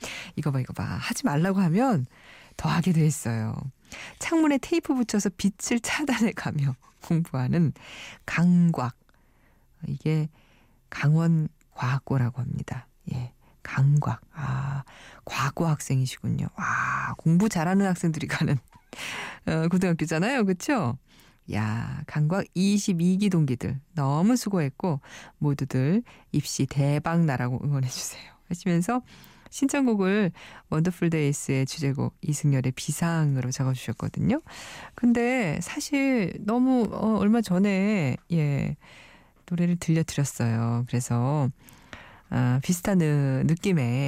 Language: Korean